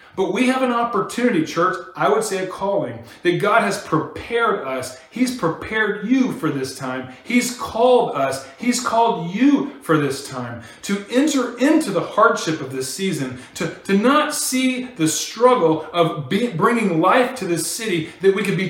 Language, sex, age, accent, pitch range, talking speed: English, male, 30-49, American, 155-235 Hz, 175 wpm